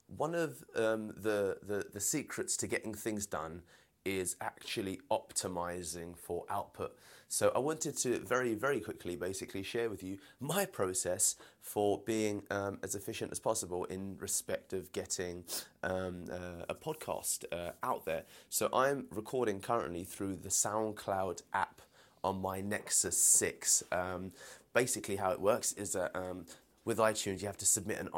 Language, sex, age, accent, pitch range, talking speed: English, male, 30-49, British, 95-110 Hz, 160 wpm